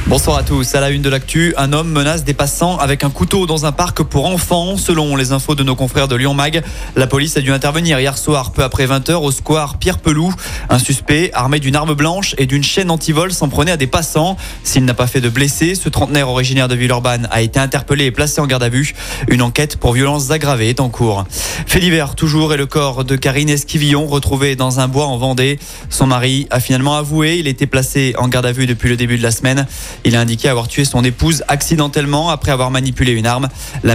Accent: French